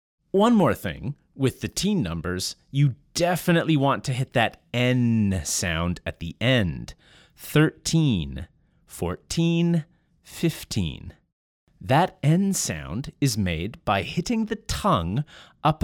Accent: American